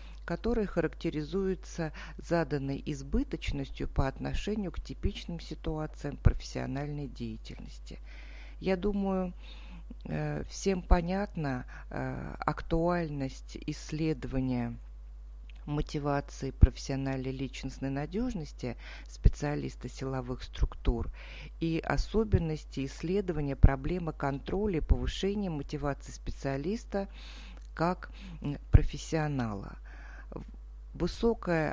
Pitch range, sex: 130-170 Hz, female